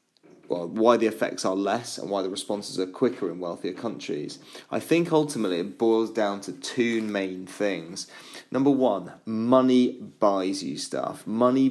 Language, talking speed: English, 160 wpm